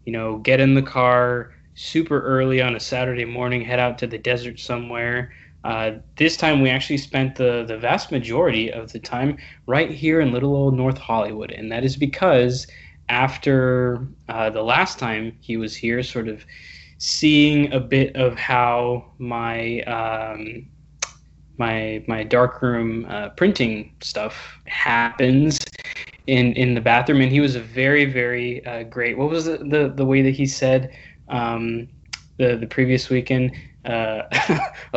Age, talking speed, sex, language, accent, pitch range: 20-39, 160 wpm, male, English, American, 120-140 Hz